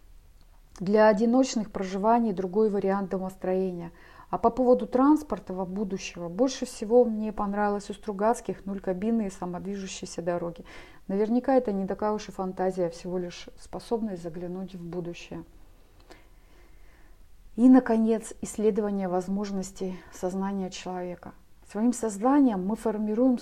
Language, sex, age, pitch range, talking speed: Russian, female, 30-49, 180-220 Hz, 120 wpm